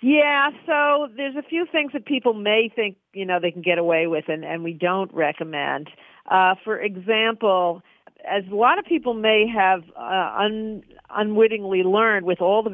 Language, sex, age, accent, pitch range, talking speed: English, female, 50-69, American, 180-225 Hz, 185 wpm